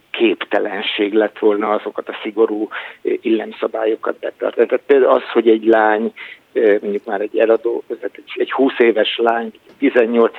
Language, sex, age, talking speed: Hungarian, male, 50-69, 120 wpm